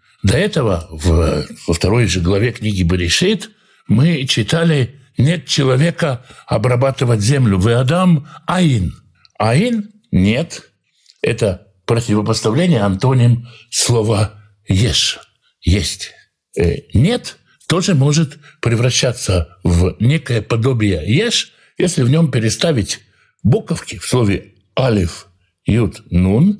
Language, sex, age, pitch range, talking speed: Russian, male, 60-79, 110-165 Hz, 100 wpm